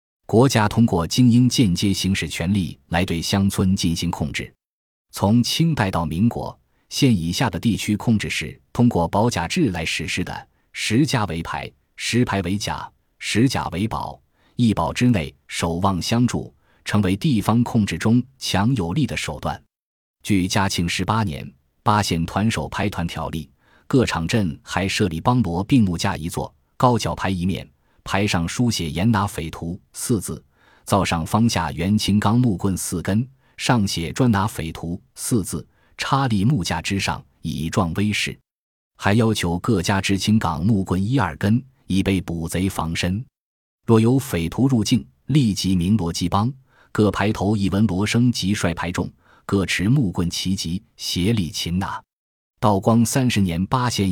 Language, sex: Chinese, male